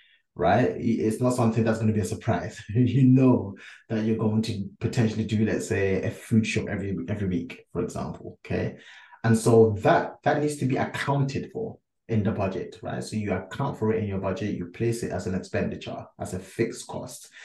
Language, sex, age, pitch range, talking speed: English, male, 20-39, 110-125 Hz, 205 wpm